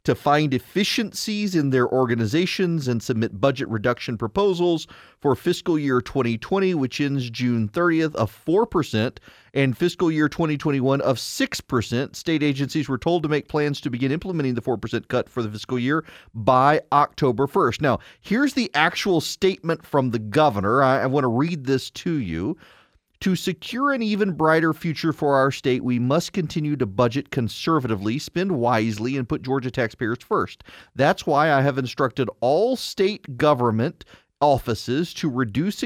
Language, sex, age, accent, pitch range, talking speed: English, male, 40-59, American, 120-160 Hz, 155 wpm